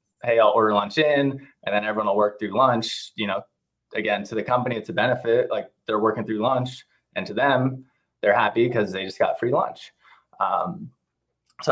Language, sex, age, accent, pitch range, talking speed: English, male, 20-39, American, 110-140 Hz, 200 wpm